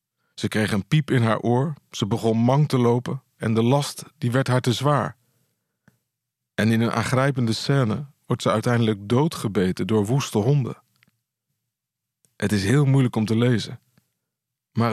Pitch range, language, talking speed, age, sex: 115-145 Hz, Dutch, 160 wpm, 50-69, male